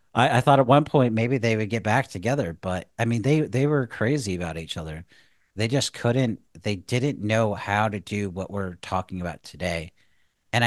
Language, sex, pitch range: English, male, 95-120 Hz